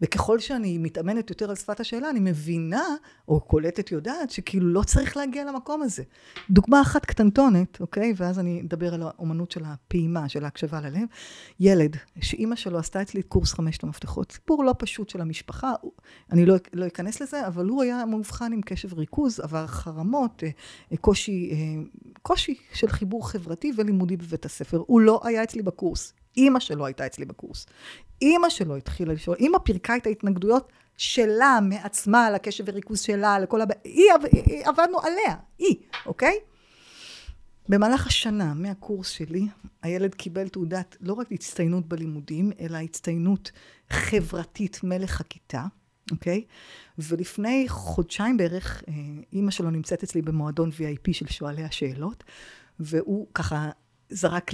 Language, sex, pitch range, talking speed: Hebrew, female, 165-225 Hz, 145 wpm